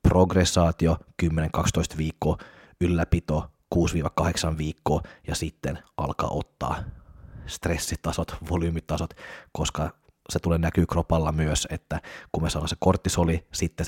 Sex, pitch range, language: male, 80-90 Hz, Finnish